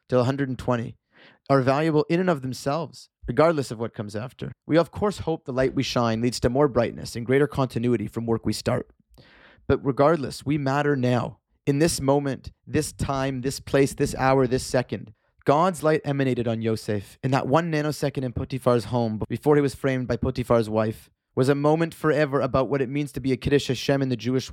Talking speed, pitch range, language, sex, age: 205 wpm, 115-140 Hz, English, male, 30-49